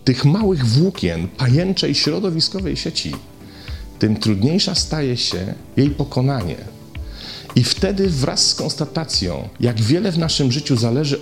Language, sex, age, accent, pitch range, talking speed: Polish, male, 40-59, native, 110-155 Hz, 125 wpm